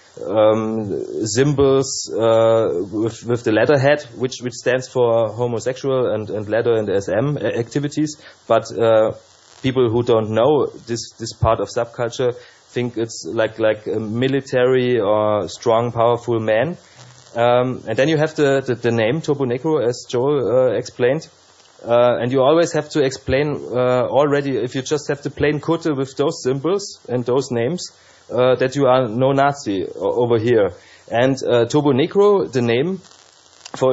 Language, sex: English, male